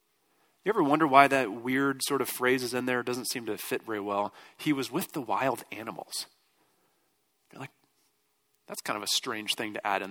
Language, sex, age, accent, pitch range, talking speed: English, male, 30-49, American, 125-145 Hz, 215 wpm